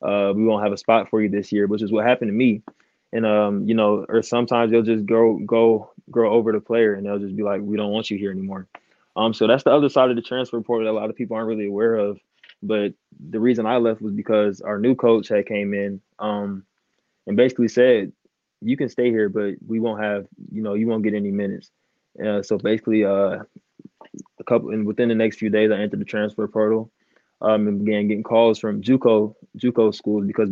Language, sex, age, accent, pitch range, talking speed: English, male, 20-39, American, 105-115 Hz, 235 wpm